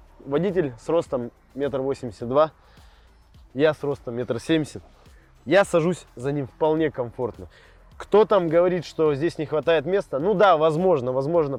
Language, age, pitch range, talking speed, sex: Russian, 20-39, 130-175 Hz, 150 wpm, male